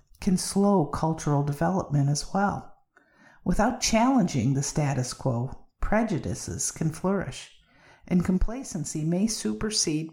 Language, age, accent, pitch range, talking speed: English, 50-69, American, 145-195 Hz, 105 wpm